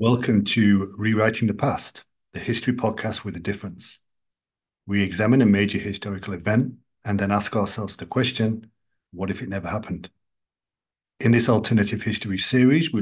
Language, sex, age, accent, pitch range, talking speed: English, male, 40-59, British, 100-120 Hz, 155 wpm